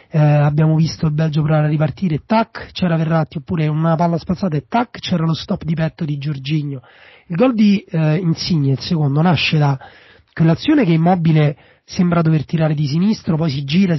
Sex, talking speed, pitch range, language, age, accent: male, 190 wpm, 145-180 Hz, Italian, 30-49, native